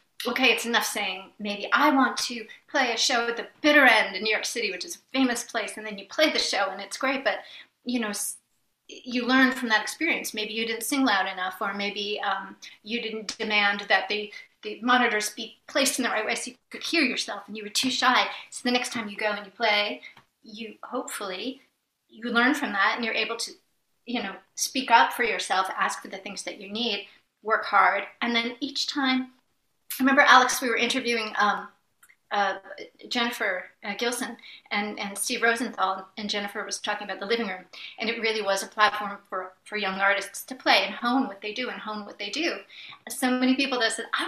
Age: 30-49